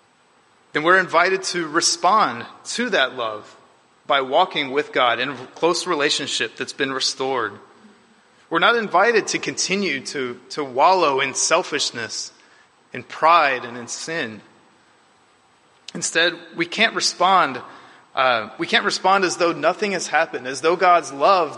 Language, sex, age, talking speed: English, male, 30-49, 140 wpm